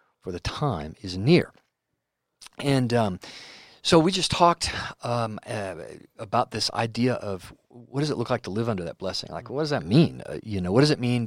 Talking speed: 210 wpm